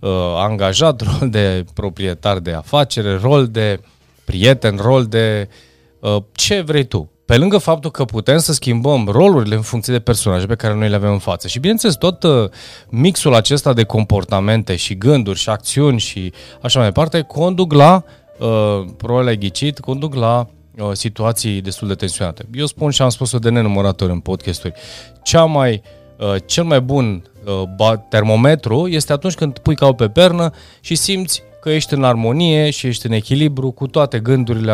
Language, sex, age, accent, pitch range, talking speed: Romanian, male, 30-49, native, 105-145 Hz, 170 wpm